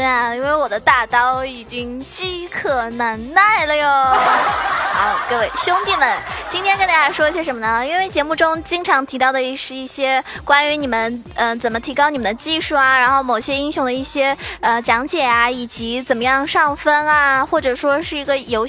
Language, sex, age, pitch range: Chinese, female, 20-39, 240-300 Hz